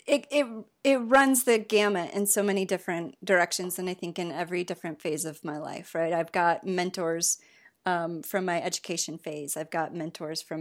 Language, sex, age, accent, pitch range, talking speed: English, female, 30-49, American, 160-195 Hz, 190 wpm